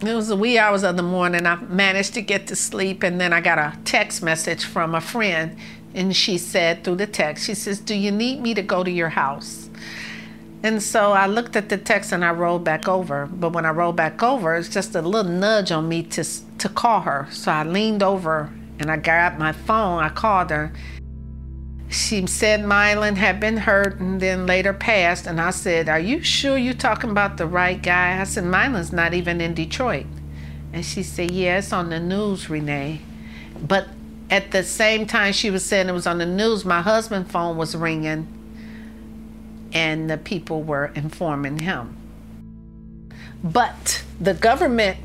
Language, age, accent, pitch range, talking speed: English, 50-69, American, 165-205 Hz, 195 wpm